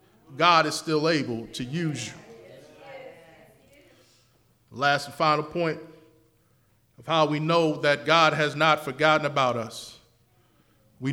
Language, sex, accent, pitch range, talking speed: English, male, American, 130-160 Hz, 125 wpm